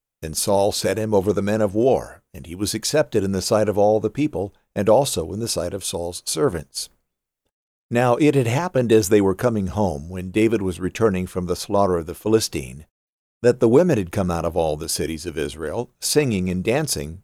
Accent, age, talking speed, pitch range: American, 60-79, 215 wpm, 95-130 Hz